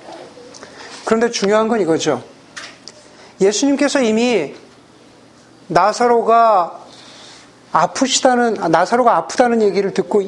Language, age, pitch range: Korean, 40-59, 185-255 Hz